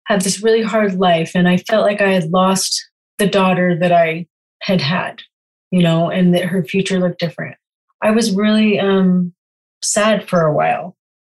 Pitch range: 180-215 Hz